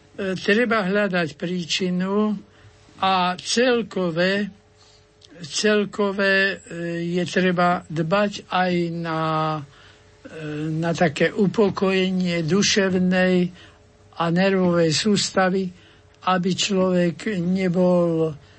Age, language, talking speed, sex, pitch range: 60-79, Slovak, 70 wpm, male, 155-185 Hz